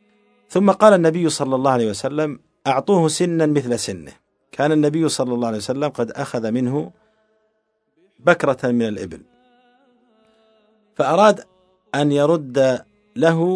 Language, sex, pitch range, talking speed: Arabic, male, 130-210 Hz, 120 wpm